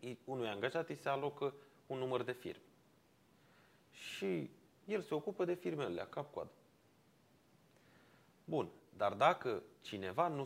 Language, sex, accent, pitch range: Romanian, male, native, 110-140 Hz